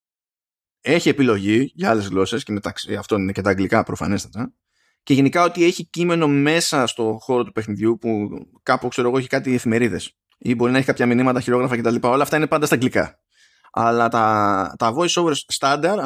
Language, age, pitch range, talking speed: Greek, 20-39, 115-150 Hz, 185 wpm